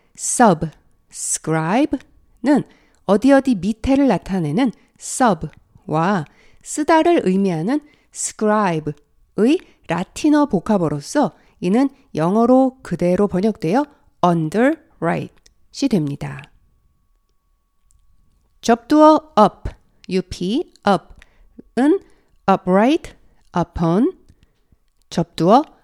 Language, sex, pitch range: Korean, female, 165-260 Hz